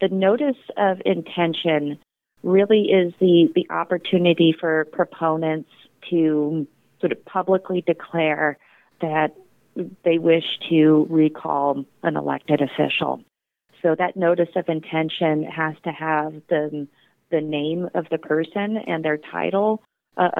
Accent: American